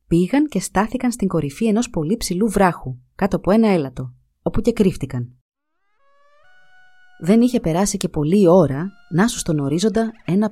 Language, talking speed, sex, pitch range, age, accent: Greek, 155 wpm, female, 155-225 Hz, 30-49, native